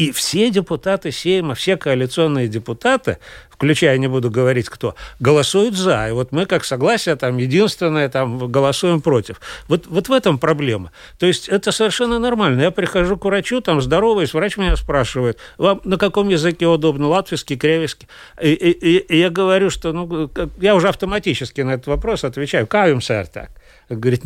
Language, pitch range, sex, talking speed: Russian, 135-190 Hz, male, 170 wpm